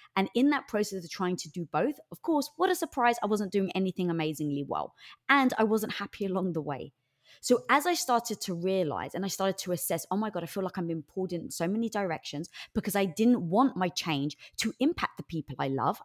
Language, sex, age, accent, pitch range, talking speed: English, female, 20-39, British, 170-230 Hz, 235 wpm